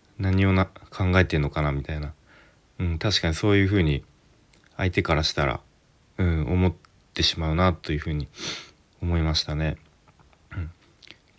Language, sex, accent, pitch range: Japanese, male, native, 75-100 Hz